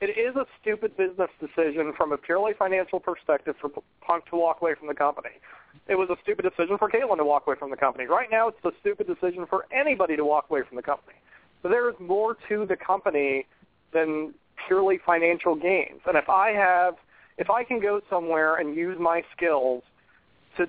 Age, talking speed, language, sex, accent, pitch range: 40-59, 205 wpm, English, male, American, 155-185 Hz